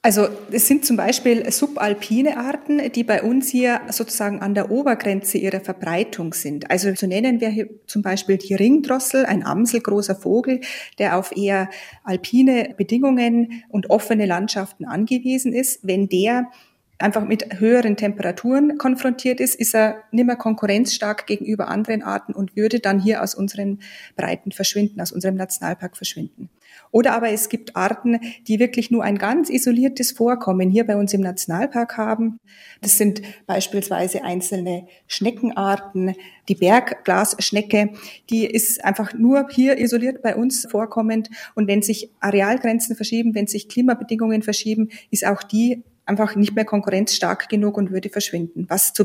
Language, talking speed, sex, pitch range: German, 150 wpm, female, 200-240 Hz